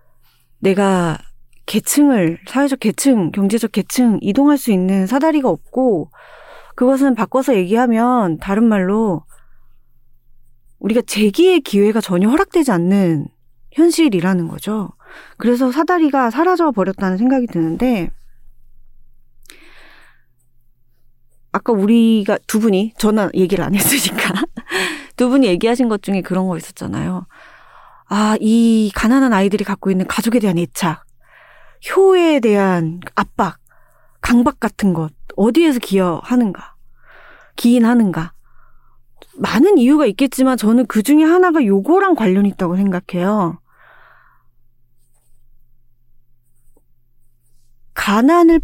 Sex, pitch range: female, 165-255 Hz